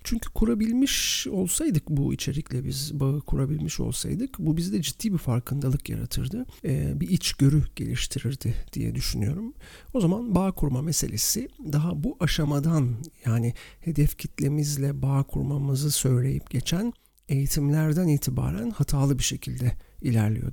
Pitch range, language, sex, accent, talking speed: 125-160 Hz, Turkish, male, native, 125 wpm